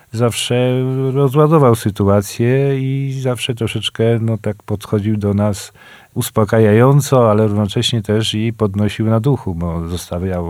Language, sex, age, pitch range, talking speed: Polish, male, 40-59, 95-115 Hz, 120 wpm